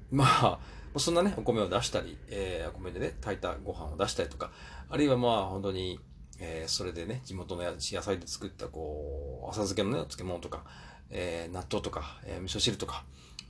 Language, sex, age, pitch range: Japanese, male, 40-59, 75-115 Hz